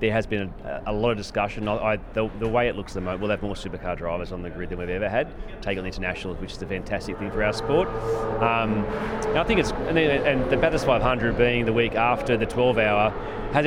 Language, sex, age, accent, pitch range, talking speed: English, male, 30-49, Australian, 105-120 Hz, 265 wpm